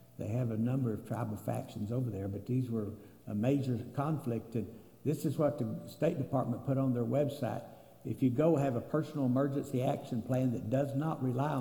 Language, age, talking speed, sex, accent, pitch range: English, 60-79, 200 wpm, male, American, 115-145 Hz